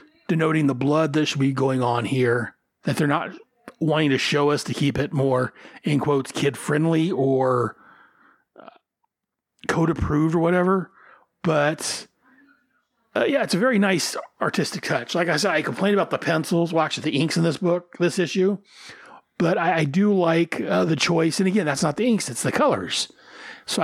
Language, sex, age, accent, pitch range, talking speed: English, male, 40-59, American, 140-180 Hz, 180 wpm